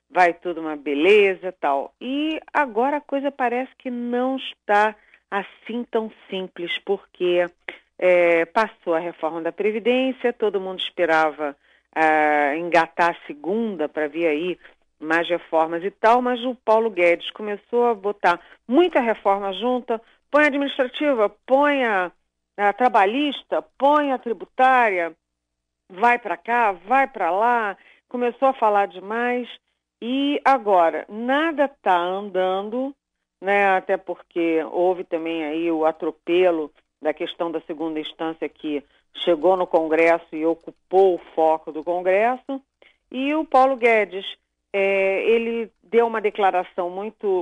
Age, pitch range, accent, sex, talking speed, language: 40-59, 170-245 Hz, Brazilian, female, 135 wpm, Portuguese